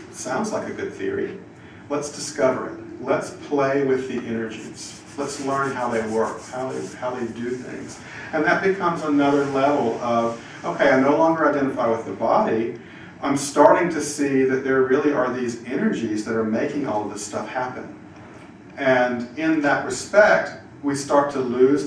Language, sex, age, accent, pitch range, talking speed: English, male, 40-59, American, 115-140 Hz, 175 wpm